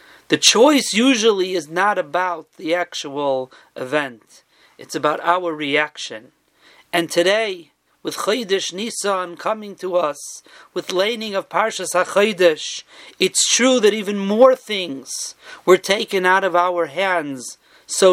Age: 40-59